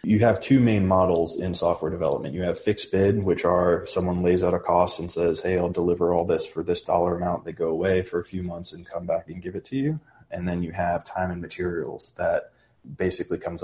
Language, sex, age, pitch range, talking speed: English, male, 20-39, 85-95 Hz, 240 wpm